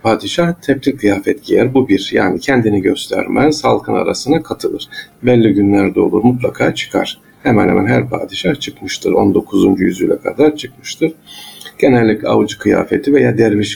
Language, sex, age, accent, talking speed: Turkish, male, 50-69, native, 135 wpm